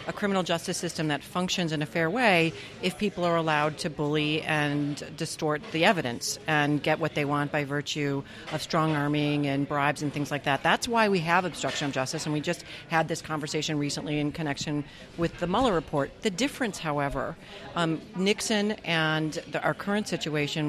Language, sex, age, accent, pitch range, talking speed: English, female, 40-59, American, 150-175 Hz, 190 wpm